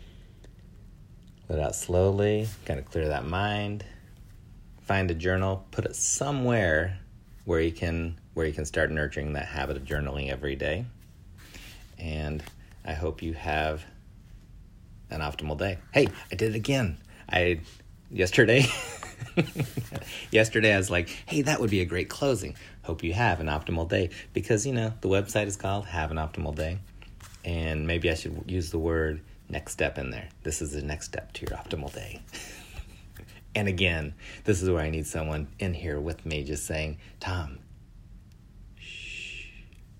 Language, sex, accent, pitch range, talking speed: English, male, American, 80-105 Hz, 160 wpm